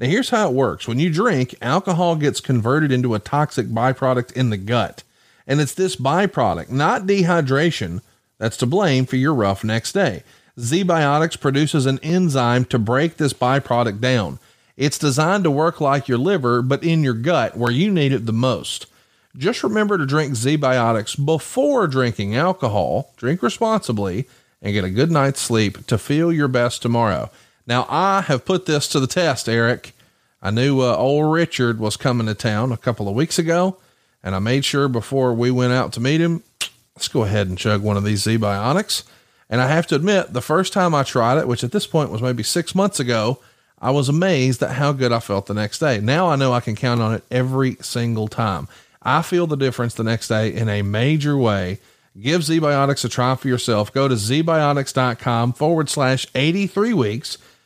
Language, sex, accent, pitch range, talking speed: English, male, American, 115-155 Hz, 200 wpm